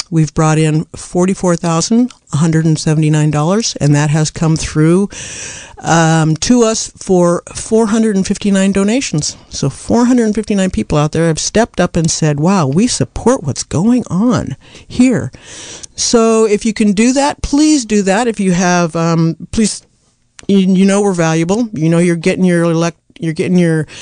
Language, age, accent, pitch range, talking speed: English, 50-69, American, 155-210 Hz, 145 wpm